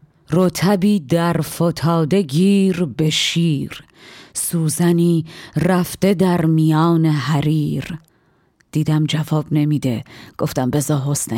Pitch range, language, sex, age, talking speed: 150-175 Hz, Persian, female, 30-49, 90 wpm